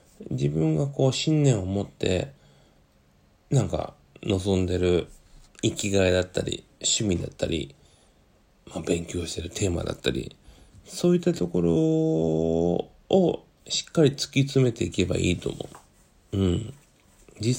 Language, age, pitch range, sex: Japanese, 40-59, 90-135 Hz, male